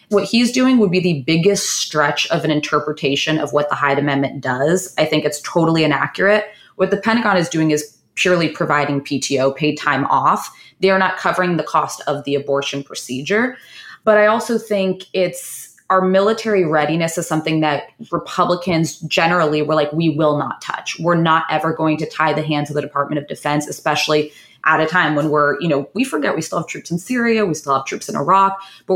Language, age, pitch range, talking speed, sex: English, 20-39, 145-170 Hz, 205 wpm, female